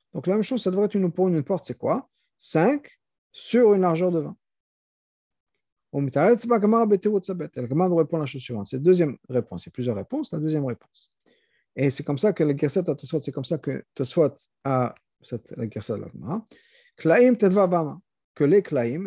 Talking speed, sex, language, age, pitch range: 175 wpm, male, French, 50-69, 120-180 Hz